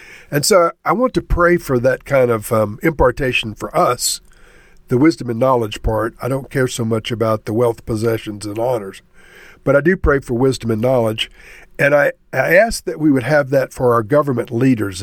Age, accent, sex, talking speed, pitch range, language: 50-69, American, male, 205 wpm, 115-155 Hz, English